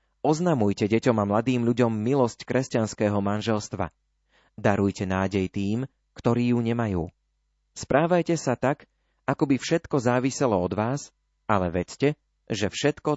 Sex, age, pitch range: male, 30-49, 100-130 Hz